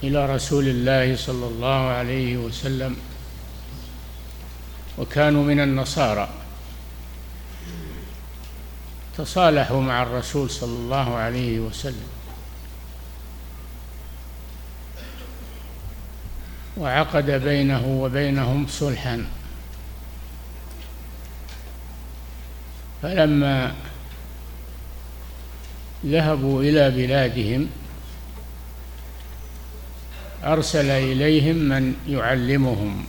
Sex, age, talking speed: male, 60-79, 55 wpm